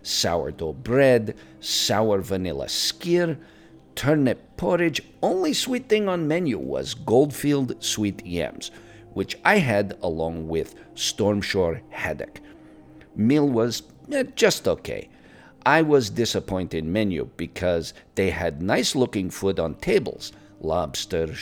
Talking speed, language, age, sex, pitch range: 110 wpm, English, 50-69, male, 90-135 Hz